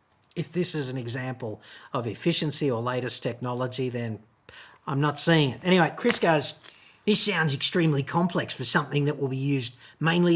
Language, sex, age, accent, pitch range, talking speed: English, male, 50-69, Australian, 125-165 Hz, 170 wpm